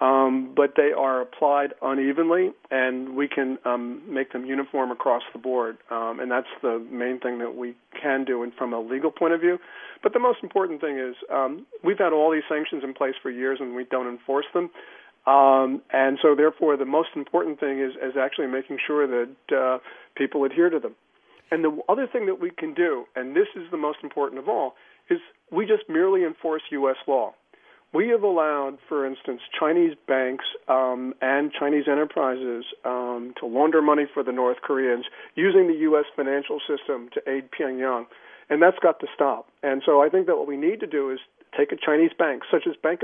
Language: English